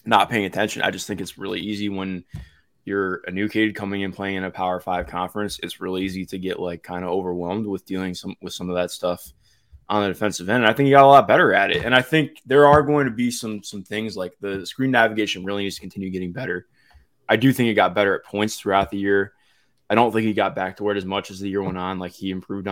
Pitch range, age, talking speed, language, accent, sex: 95-115 Hz, 20-39, 270 wpm, English, American, male